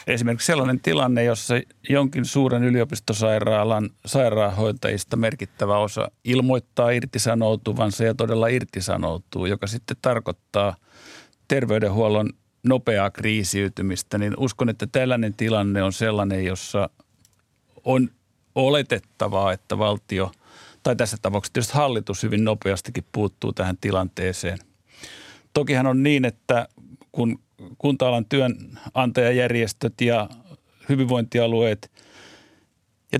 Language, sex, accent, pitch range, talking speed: Finnish, male, native, 105-125 Hz, 100 wpm